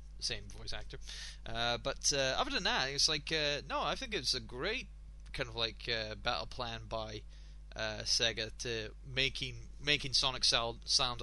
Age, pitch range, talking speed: 20-39, 115-150 Hz, 170 wpm